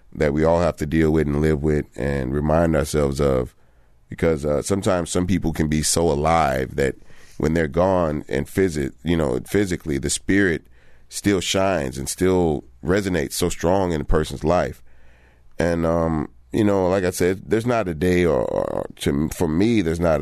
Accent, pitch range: American, 75-85 Hz